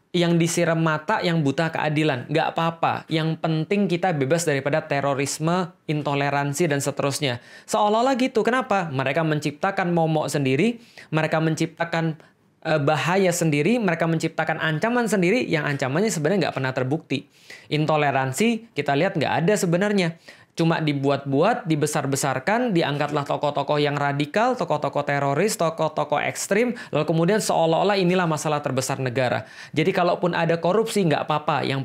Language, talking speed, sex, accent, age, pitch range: Indonesian, 130 wpm, male, native, 20-39, 145-190 Hz